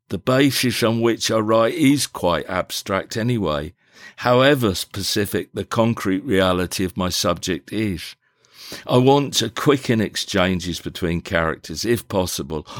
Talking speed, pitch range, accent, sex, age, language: 130 wpm, 90-120 Hz, British, male, 50-69, English